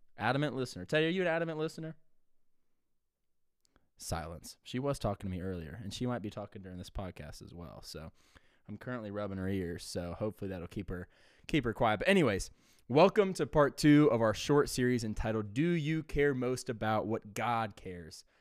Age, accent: 20-39, American